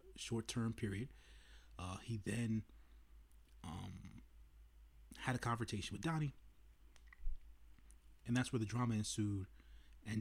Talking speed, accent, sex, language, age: 110 wpm, American, male, English, 30-49